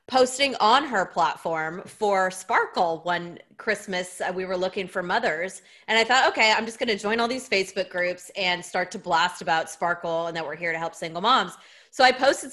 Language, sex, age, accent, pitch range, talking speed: English, female, 30-49, American, 185-230 Hz, 205 wpm